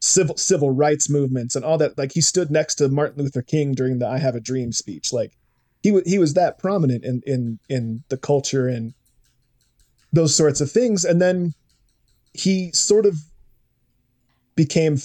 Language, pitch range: English, 125-155 Hz